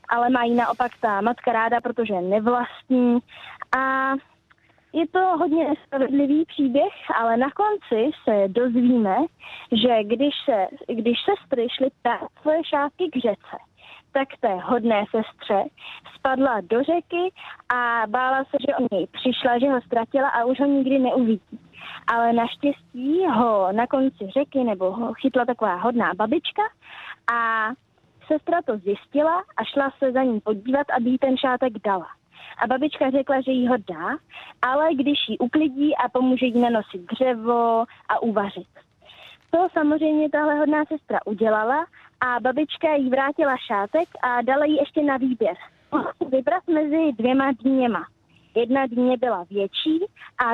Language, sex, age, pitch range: Czech, female, 20-39, 235-295 Hz